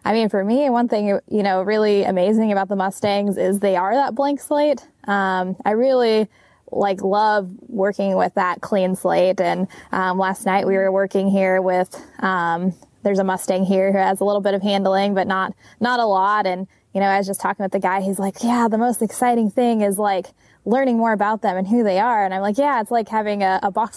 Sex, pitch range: female, 190-235 Hz